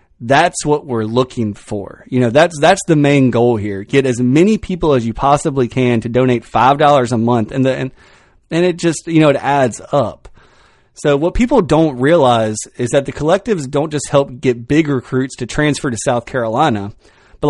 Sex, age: male, 30-49